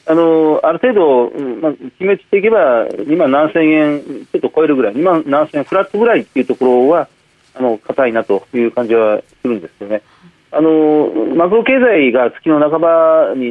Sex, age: male, 40-59